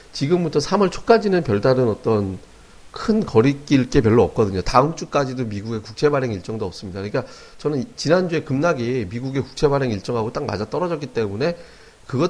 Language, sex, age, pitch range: Korean, male, 40-59, 105-140 Hz